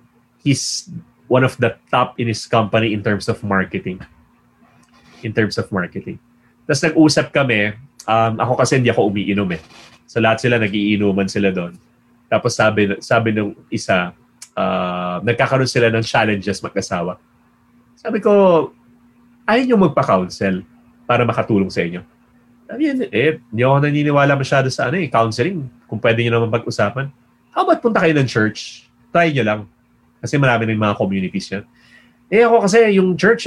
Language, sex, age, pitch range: English, male, 30-49, 105-140 Hz